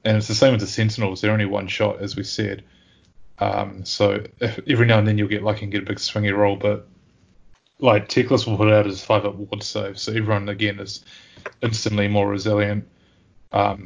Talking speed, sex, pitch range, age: 210 wpm, male, 100-105 Hz, 20-39